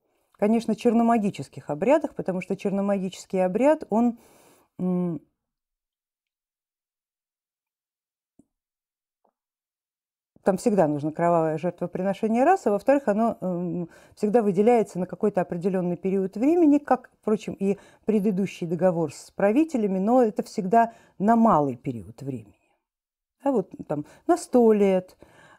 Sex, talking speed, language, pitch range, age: female, 105 wpm, Russian, 170-230 Hz, 50-69